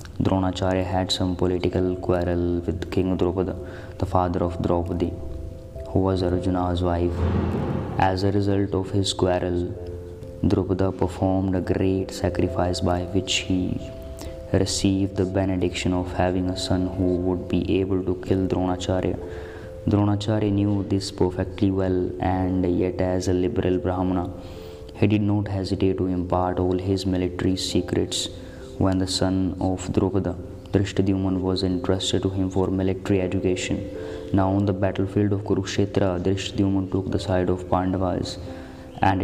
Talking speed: 140 wpm